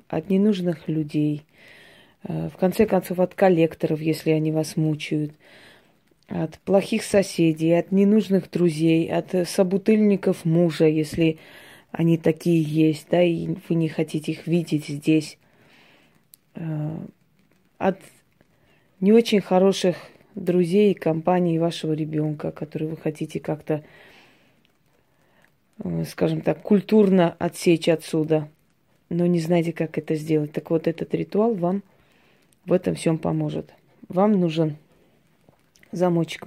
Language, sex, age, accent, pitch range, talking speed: Russian, female, 20-39, native, 155-185 Hz, 115 wpm